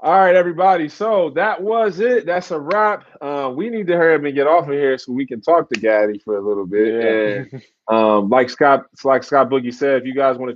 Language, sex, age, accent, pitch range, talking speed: English, male, 20-39, American, 105-130 Hz, 240 wpm